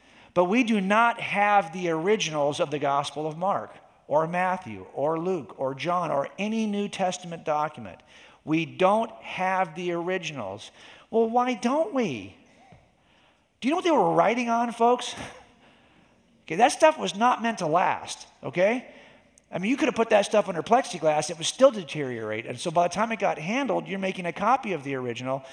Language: English